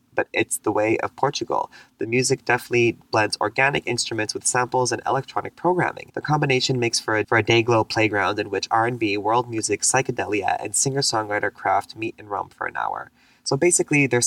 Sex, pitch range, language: male, 110-135 Hz, English